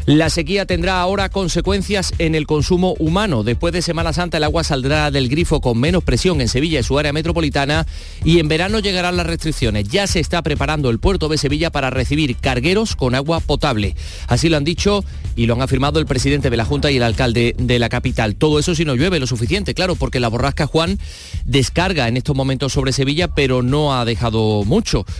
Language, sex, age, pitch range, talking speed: Spanish, male, 30-49, 120-165 Hz, 210 wpm